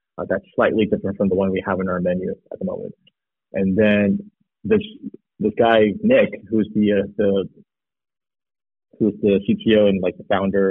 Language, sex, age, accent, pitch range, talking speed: English, male, 30-49, American, 105-170 Hz, 175 wpm